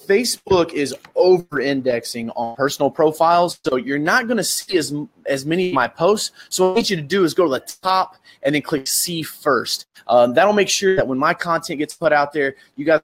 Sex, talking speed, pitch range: male, 225 wpm, 135-205 Hz